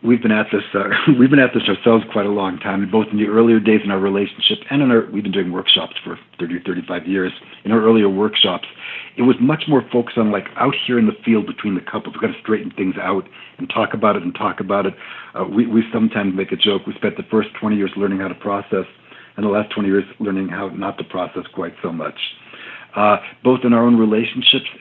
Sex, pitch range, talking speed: male, 100-125 Hz, 250 wpm